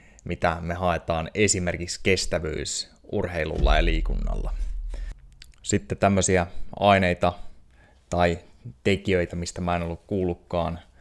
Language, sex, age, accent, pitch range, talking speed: Finnish, male, 20-39, native, 85-95 Hz, 100 wpm